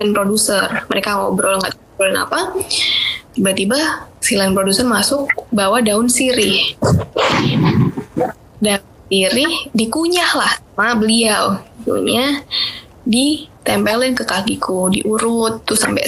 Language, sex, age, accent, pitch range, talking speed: Indonesian, female, 10-29, native, 205-265 Hz, 95 wpm